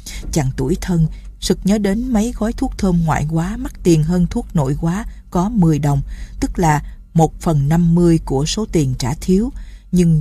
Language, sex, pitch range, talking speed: Vietnamese, female, 155-185 Hz, 190 wpm